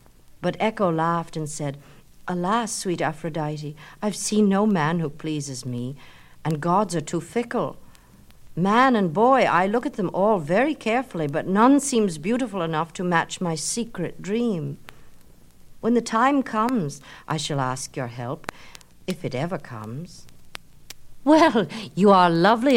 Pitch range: 145-200 Hz